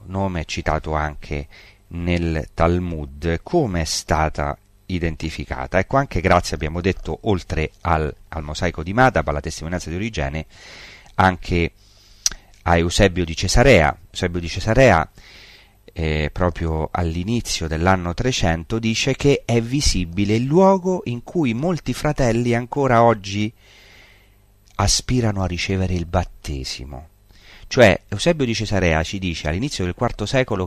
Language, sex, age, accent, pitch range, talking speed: Italian, male, 30-49, native, 80-105 Hz, 125 wpm